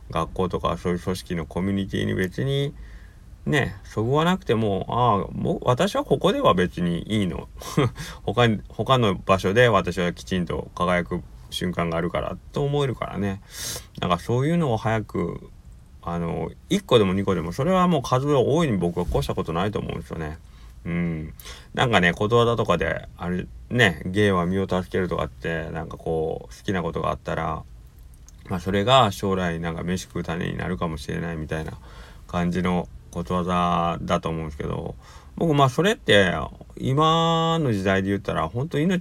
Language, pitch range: Japanese, 85-115 Hz